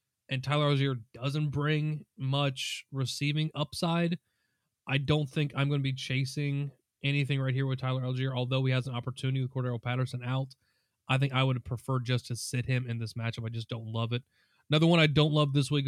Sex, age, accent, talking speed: male, 30-49, American, 210 wpm